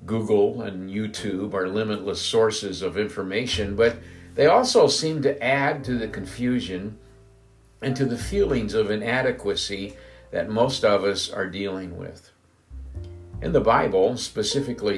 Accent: American